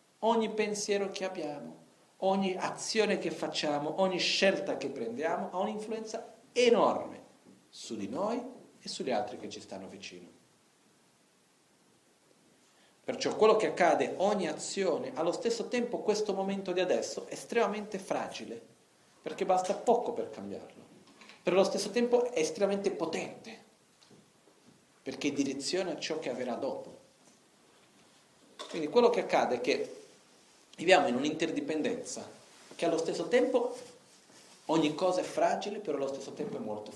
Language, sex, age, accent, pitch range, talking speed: Italian, male, 40-59, native, 145-215 Hz, 135 wpm